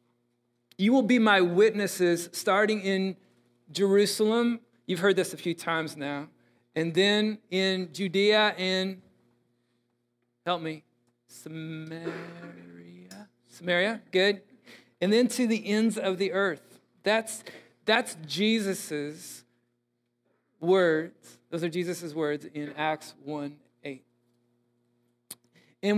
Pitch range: 145-200 Hz